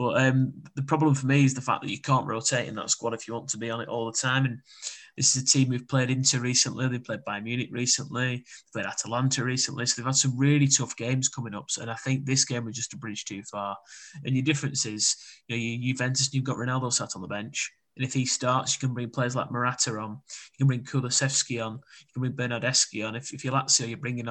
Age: 20-39